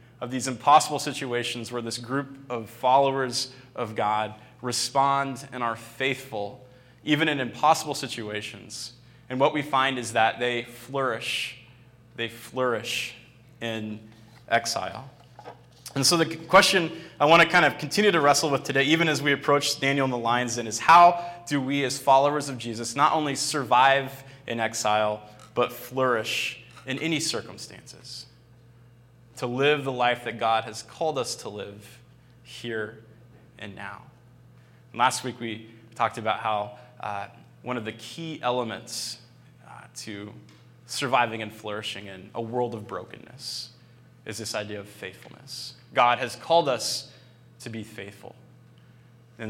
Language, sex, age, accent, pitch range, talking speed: English, male, 20-39, American, 115-135 Hz, 145 wpm